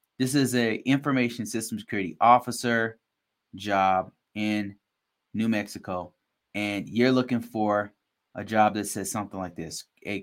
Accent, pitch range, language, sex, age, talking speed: American, 95-115 Hz, English, male, 30-49, 135 wpm